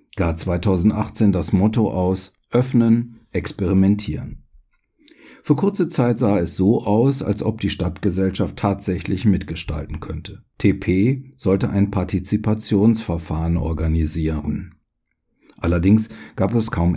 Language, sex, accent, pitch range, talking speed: German, male, German, 90-115 Hz, 105 wpm